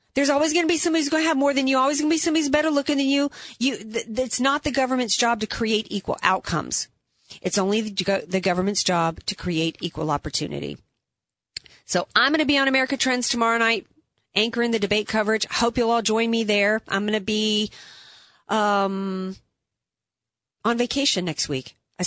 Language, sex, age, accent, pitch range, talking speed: English, female, 40-59, American, 195-245 Hz, 200 wpm